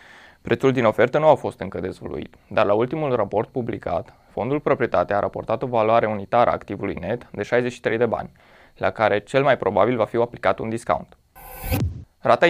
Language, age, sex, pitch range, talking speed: Romanian, 20-39, male, 105-125 Hz, 185 wpm